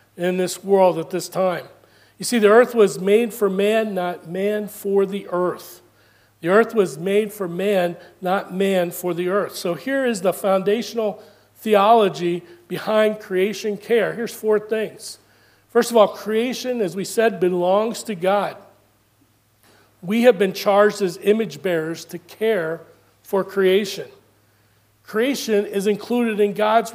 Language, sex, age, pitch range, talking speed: English, male, 40-59, 180-215 Hz, 150 wpm